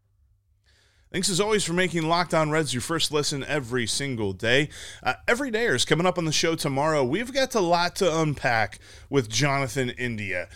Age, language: 30-49, English